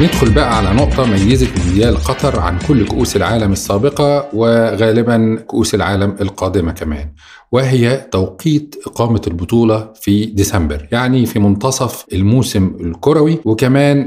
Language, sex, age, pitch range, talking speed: Arabic, male, 40-59, 95-115 Hz, 125 wpm